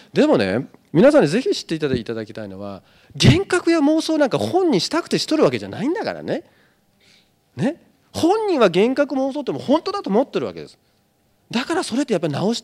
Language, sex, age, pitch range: Japanese, male, 40-59, 160-270 Hz